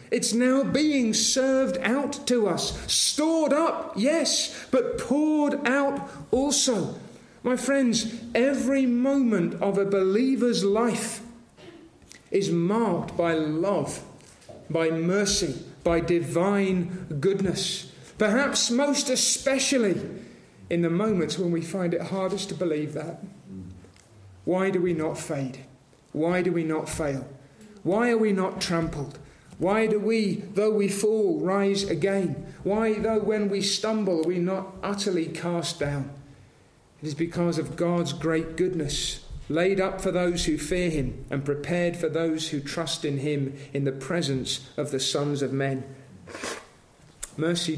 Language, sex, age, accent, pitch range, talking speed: English, male, 40-59, British, 155-215 Hz, 140 wpm